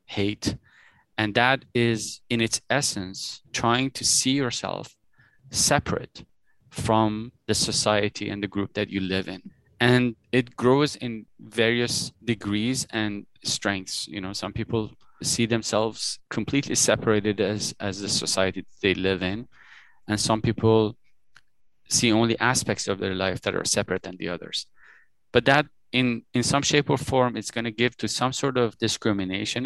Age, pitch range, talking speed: 20-39, 100-125 Hz, 155 wpm